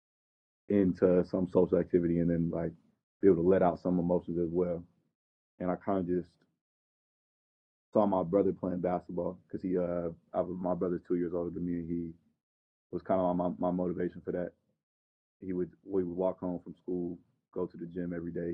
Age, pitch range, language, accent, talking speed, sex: 20-39, 85-90 Hz, English, American, 195 wpm, male